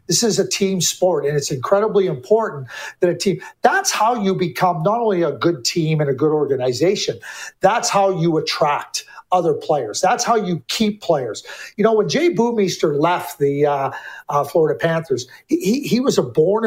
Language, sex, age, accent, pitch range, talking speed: English, male, 50-69, American, 160-210 Hz, 185 wpm